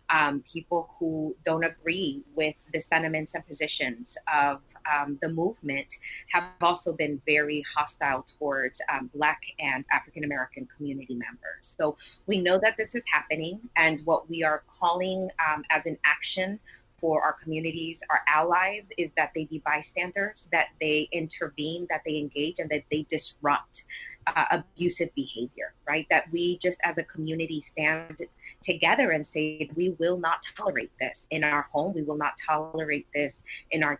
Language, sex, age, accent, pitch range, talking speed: English, female, 20-39, American, 150-175 Hz, 160 wpm